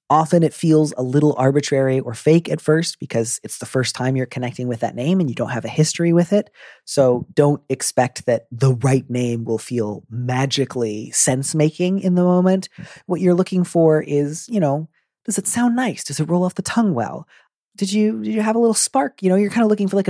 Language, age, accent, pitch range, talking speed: English, 30-49, American, 120-170 Hz, 225 wpm